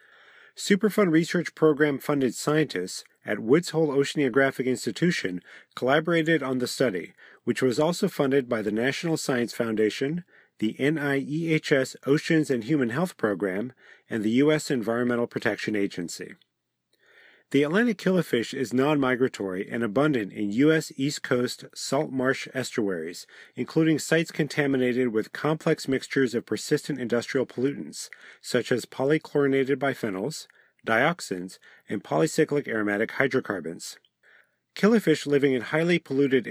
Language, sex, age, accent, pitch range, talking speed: English, male, 40-59, American, 120-155 Hz, 120 wpm